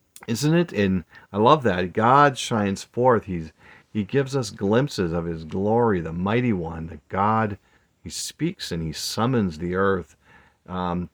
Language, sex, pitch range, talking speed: English, male, 90-120 Hz, 160 wpm